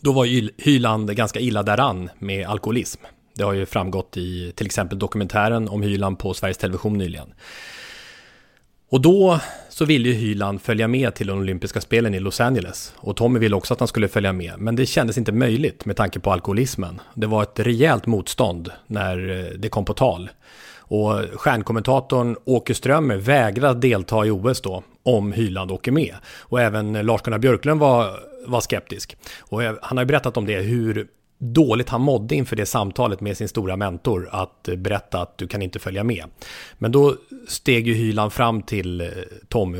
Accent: Swedish